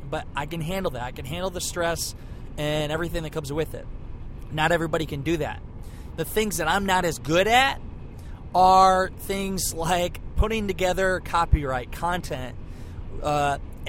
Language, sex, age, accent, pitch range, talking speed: English, male, 20-39, American, 125-170 Hz, 160 wpm